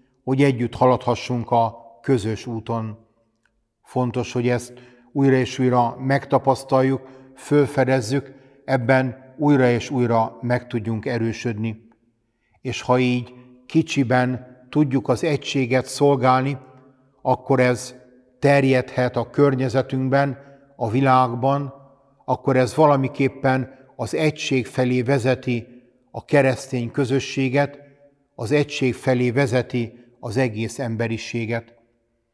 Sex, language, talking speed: male, Hungarian, 100 wpm